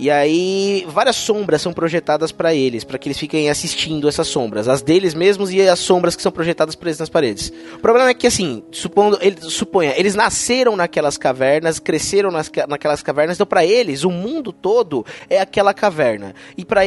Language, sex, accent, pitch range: Portuguese, male, Brazilian, 165-225 Hz